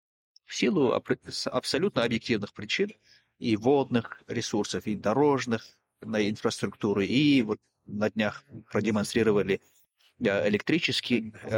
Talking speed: 95 wpm